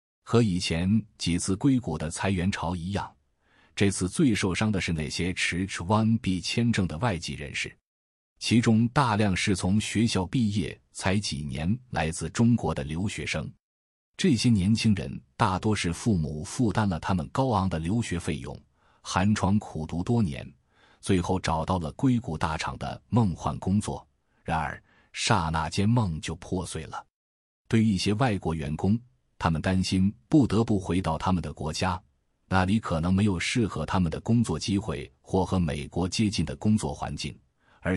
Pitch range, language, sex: 80-105 Hz, Chinese, male